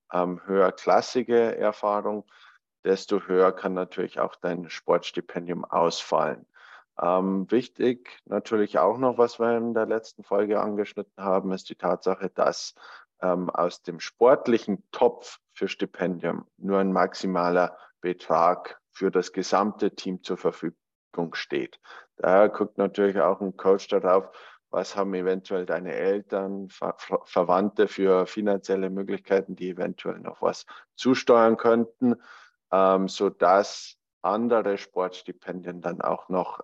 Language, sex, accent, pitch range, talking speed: German, male, German, 95-105 Hz, 125 wpm